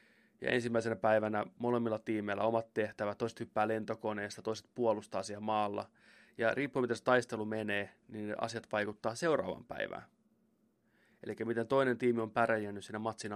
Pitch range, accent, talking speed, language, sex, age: 105-120 Hz, native, 155 wpm, Finnish, male, 20-39